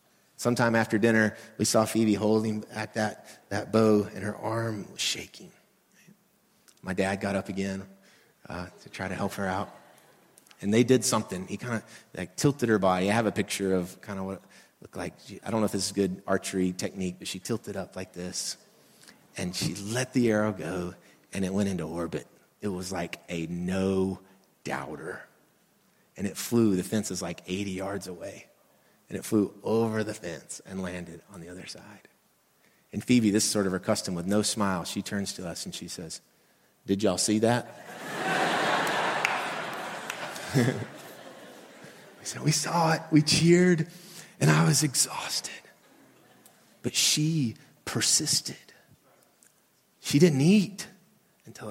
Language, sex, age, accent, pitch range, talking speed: English, male, 30-49, American, 95-130 Hz, 165 wpm